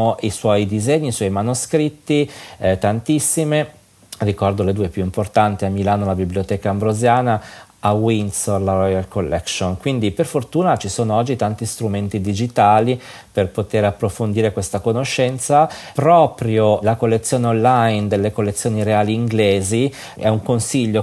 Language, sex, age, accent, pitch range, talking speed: Italian, male, 40-59, native, 100-120 Hz, 135 wpm